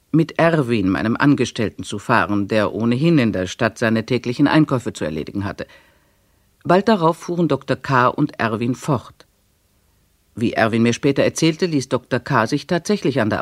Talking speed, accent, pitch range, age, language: 165 wpm, German, 110-155 Hz, 50-69, German